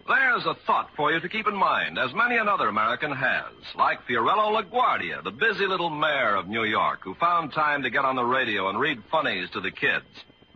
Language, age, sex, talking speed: English, 60-79, male, 215 wpm